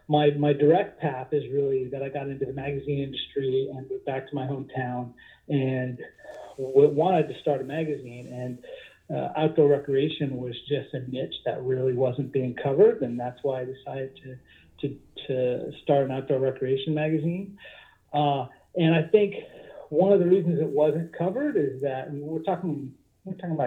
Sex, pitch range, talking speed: male, 135-160 Hz, 175 wpm